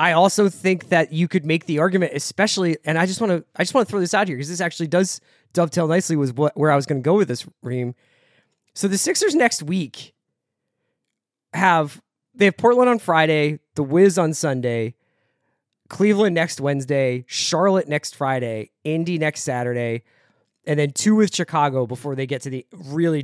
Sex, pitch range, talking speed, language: male, 135-180 Hz, 195 wpm, English